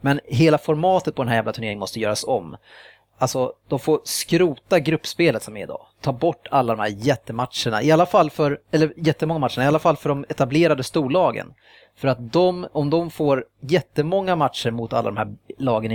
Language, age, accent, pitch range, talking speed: Swedish, 30-49, Norwegian, 125-165 Hz, 195 wpm